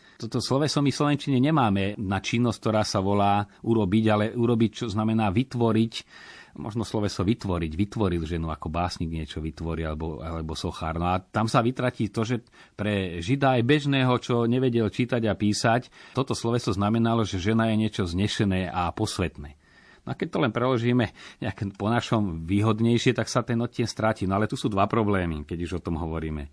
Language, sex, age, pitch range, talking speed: Slovak, male, 40-59, 90-115 Hz, 180 wpm